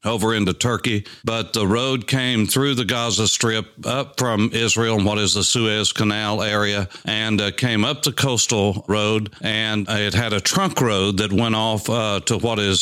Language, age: English, 60-79